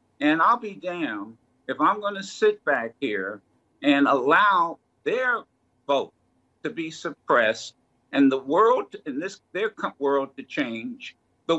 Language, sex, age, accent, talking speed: English, male, 50-69, American, 150 wpm